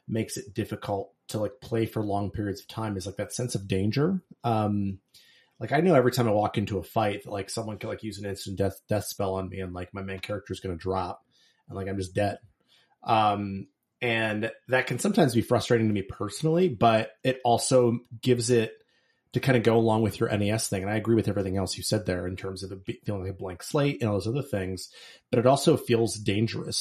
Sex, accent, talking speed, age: male, American, 240 wpm, 30-49